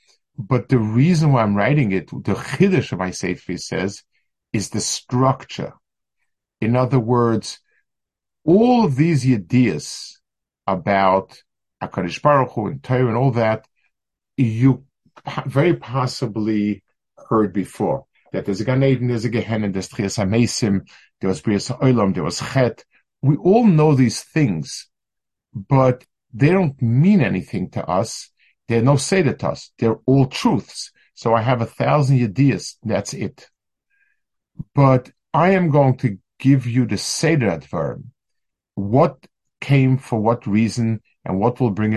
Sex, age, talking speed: male, 50-69, 145 wpm